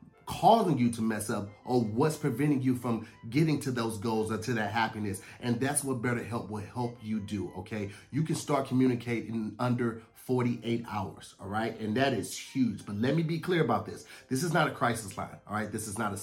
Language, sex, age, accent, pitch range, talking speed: English, male, 30-49, American, 115-155 Hz, 225 wpm